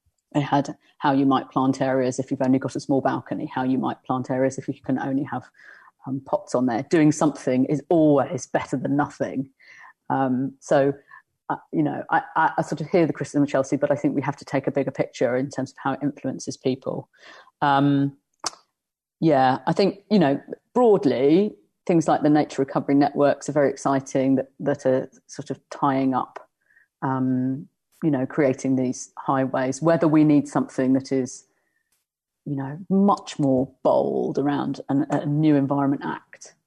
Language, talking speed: English, 185 wpm